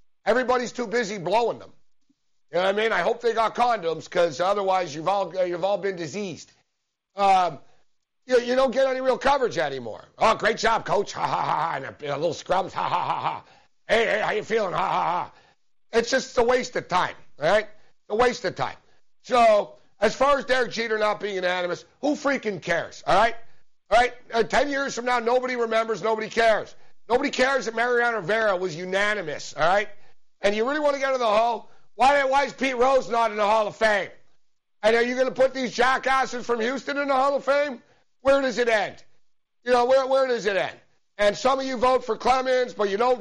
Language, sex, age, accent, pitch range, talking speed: English, male, 60-79, American, 205-255 Hz, 220 wpm